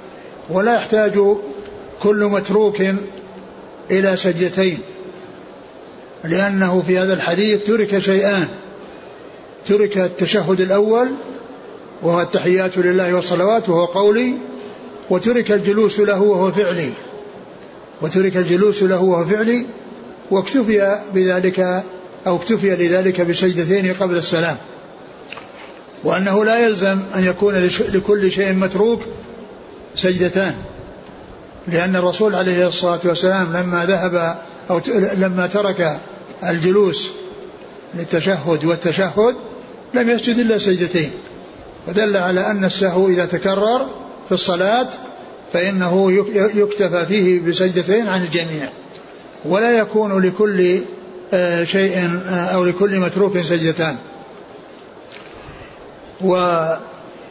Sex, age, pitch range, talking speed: male, 60-79, 180-205 Hz, 90 wpm